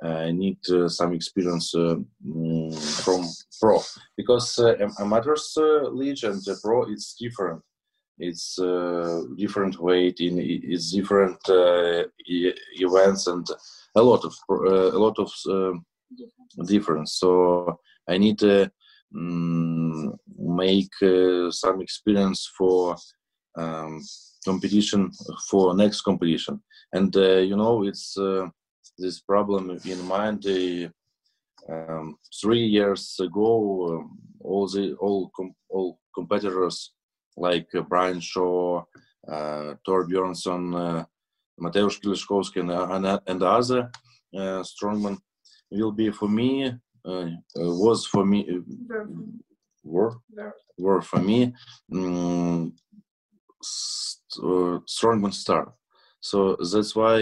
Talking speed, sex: 115 wpm, male